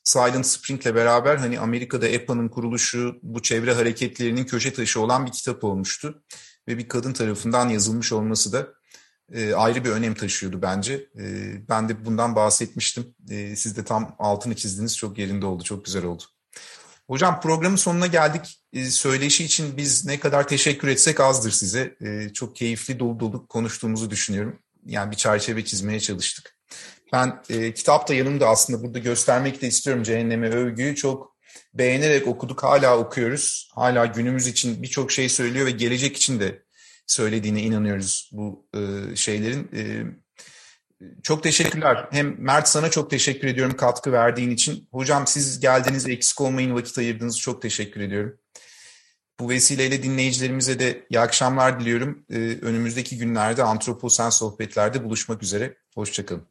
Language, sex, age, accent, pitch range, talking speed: Turkish, male, 40-59, native, 110-135 Hz, 150 wpm